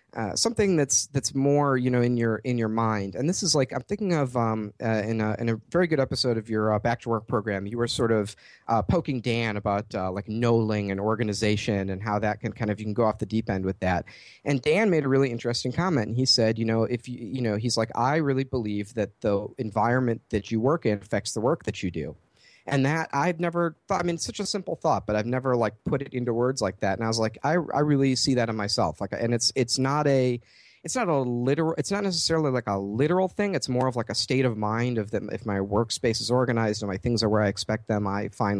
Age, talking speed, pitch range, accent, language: 40-59, 265 wpm, 105-135 Hz, American, English